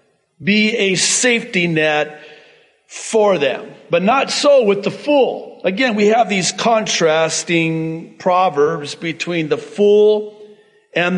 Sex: male